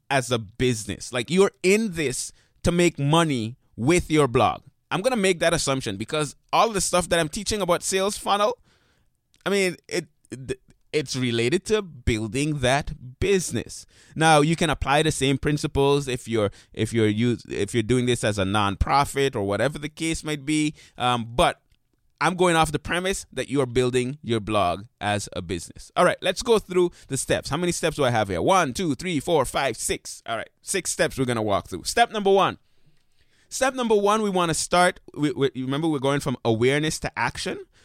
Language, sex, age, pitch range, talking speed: English, male, 20-39, 120-175 Hz, 200 wpm